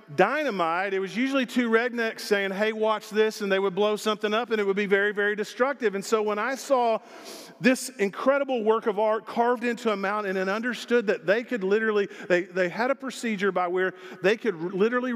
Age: 40-59